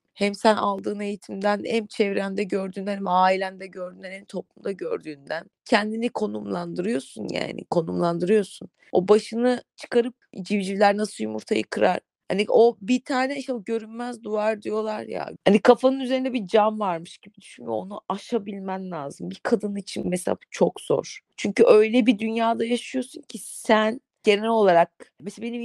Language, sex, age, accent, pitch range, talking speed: Turkish, female, 30-49, native, 180-230 Hz, 140 wpm